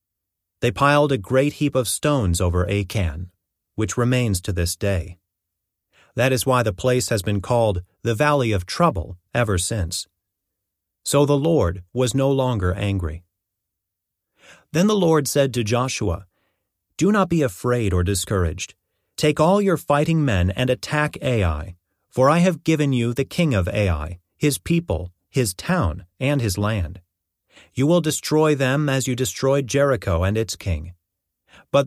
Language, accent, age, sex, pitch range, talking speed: English, American, 30-49, male, 95-135 Hz, 155 wpm